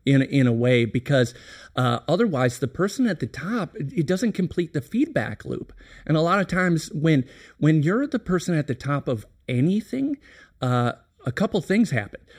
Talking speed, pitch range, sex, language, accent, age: 185 wpm, 125-165 Hz, male, English, American, 50-69